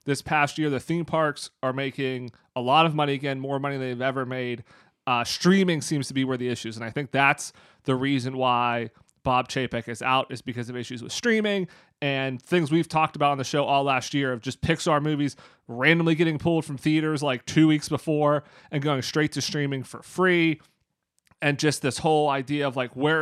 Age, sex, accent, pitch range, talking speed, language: 30-49, male, American, 135-165 Hz, 215 wpm, English